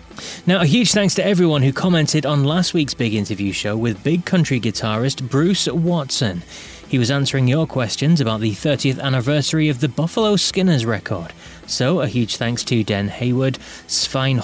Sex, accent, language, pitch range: male, British, English, 115-165 Hz